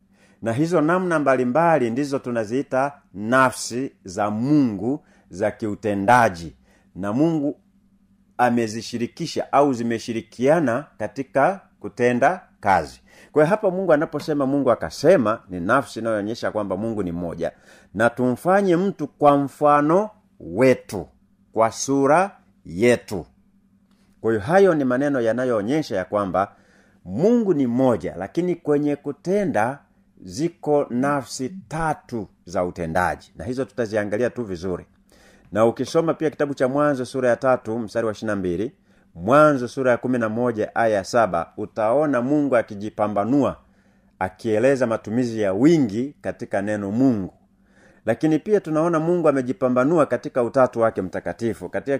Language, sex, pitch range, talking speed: Swahili, male, 110-150 Hz, 120 wpm